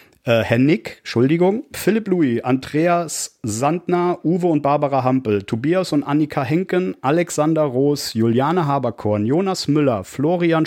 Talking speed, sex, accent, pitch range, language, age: 130 wpm, male, German, 130-165 Hz, German, 40-59